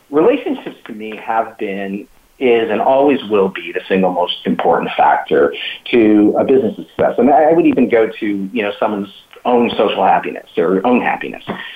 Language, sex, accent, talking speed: English, male, American, 175 wpm